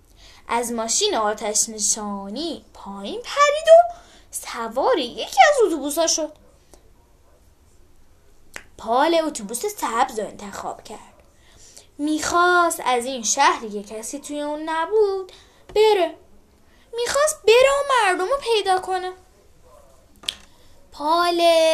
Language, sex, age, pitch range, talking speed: Persian, female, 10-29, 260-350 Hz, 100 wpm